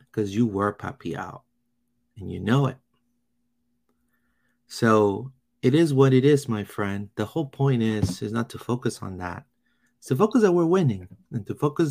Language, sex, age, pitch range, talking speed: English, male, 30-49, 110-135 Hz, 180 wpm